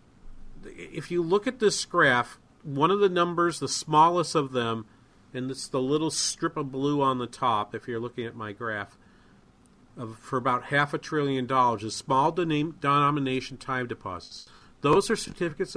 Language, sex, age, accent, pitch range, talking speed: English, male, 40-59, American, 125-160 Hz, 170 wpm